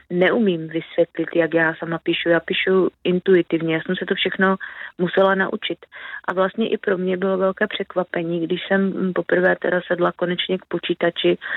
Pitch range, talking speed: 170-190 Hz, 165 wpm